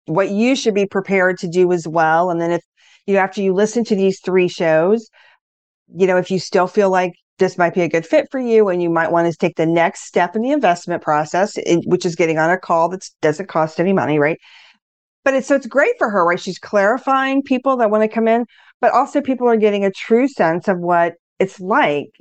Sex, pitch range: female, 165-210 Hz